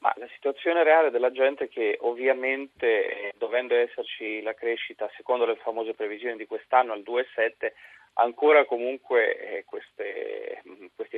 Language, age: Italian, 30-49